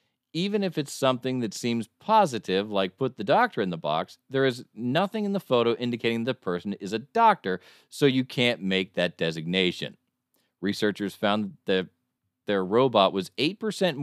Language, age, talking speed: English, 40-59, 165 wpm